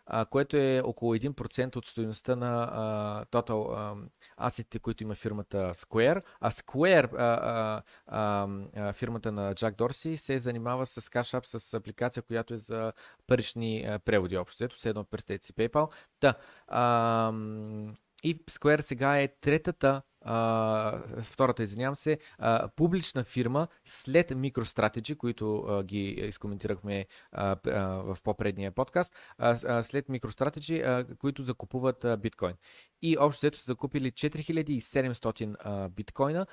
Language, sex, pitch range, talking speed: Bulgarian, male, 110-135 Hz, 135 wpm